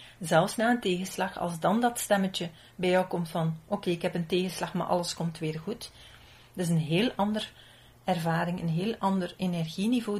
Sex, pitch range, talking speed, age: female, 155-195 Hz, 195 wpm, 40-59